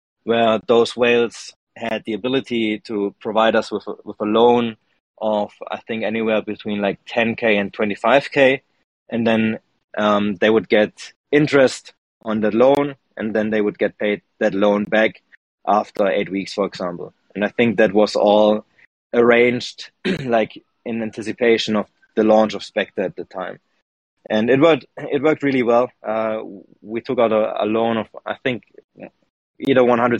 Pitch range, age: 105-120 Hz, 20-39